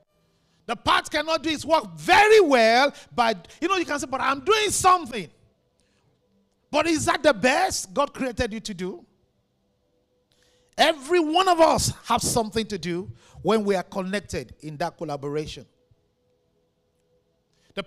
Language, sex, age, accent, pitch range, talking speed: English, male, 50-69, Nigerian, 190-310 Hz, 150 wpm